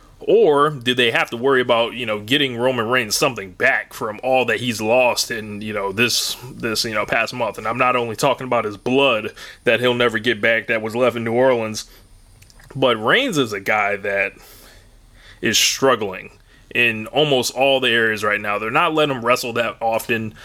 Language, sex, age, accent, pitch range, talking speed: English, male, 20-39, American, 110-145 Hz, 205 wpm